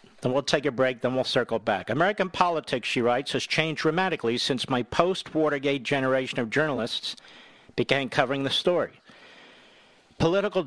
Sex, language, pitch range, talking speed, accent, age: male, English, 130-175 Hz, 150 wpm, American, 50-69